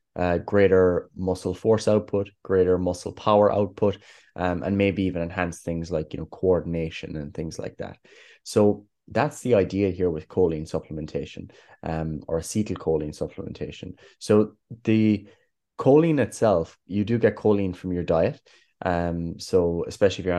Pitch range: 85-100 Hz